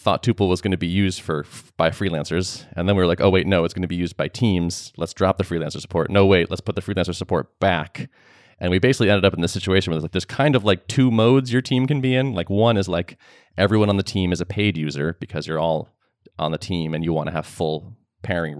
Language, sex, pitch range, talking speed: English, male, 85-105 Hz, 275 wpm